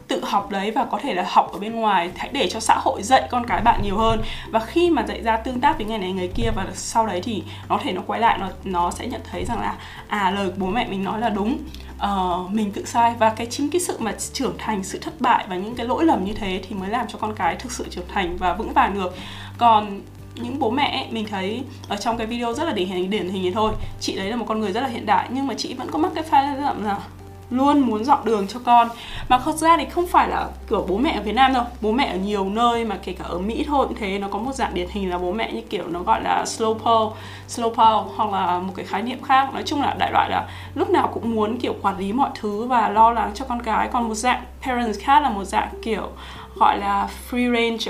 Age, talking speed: 20-39, 285 wpm